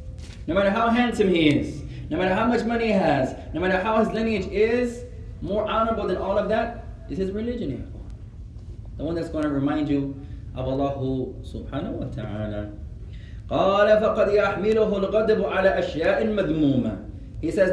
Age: 30-49